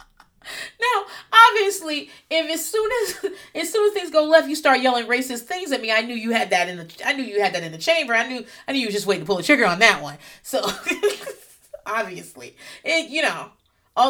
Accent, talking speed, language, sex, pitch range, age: American, 235 wpm, English, female, 220-315 Hz, 30-49